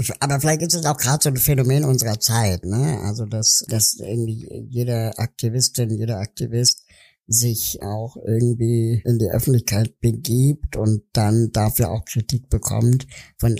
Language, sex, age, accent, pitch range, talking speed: German, male, 60-79, German, 110-125 Hz, 150 wpm